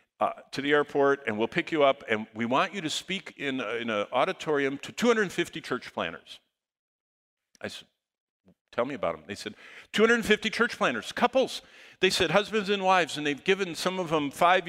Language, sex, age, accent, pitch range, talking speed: English, male, 50-69, American, 125-180 Hz, 190 wpm